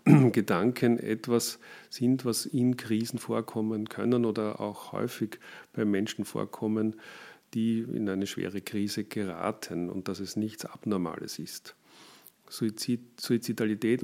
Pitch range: 100-115 Hz